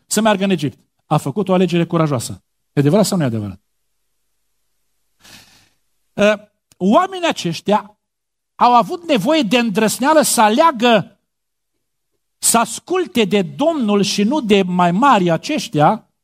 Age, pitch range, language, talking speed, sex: 50-69, 165-230 Hz, Romanian, 120 wpm, male